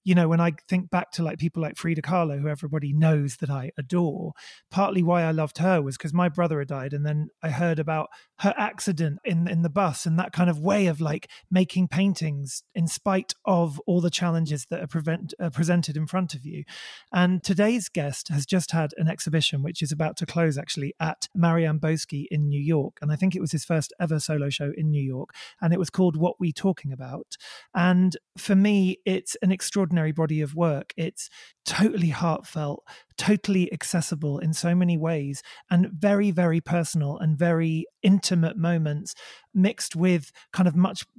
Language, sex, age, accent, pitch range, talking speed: English, male, 30-49, British, 150-180 Hz, 200 wpm